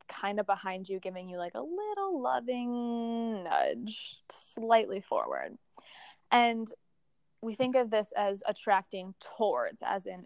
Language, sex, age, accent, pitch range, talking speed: English, female, 20-39, American, 190-245 Hz, 135 wpm